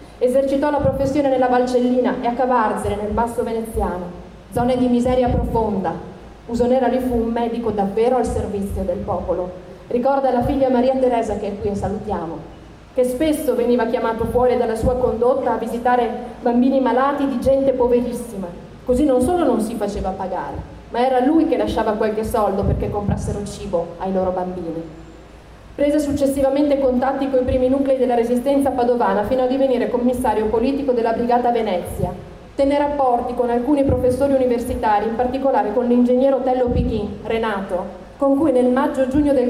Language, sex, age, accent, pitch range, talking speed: English, female, 30-49, Italian, 220-260 Hz, 160 wpm